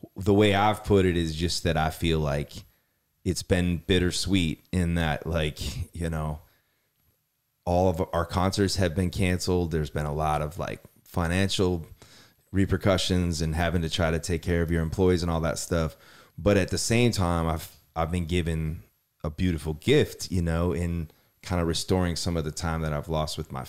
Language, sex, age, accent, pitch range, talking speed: English, male, 30-49, American, 80-95 Hz, 190 wpm